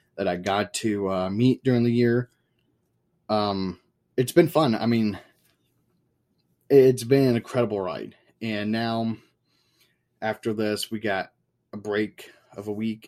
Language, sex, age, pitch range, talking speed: English, male, 20-39, 100-125 Hz, 140 wpm